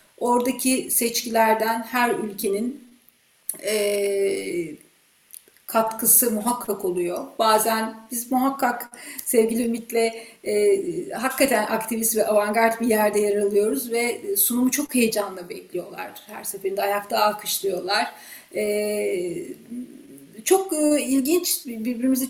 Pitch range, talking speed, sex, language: 210-280 Hz, 95 wpm, female, Turkish